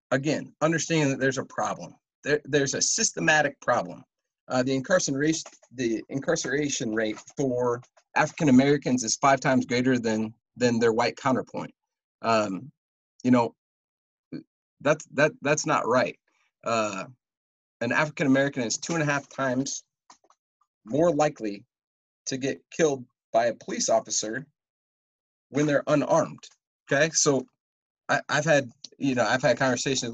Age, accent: 30-49, American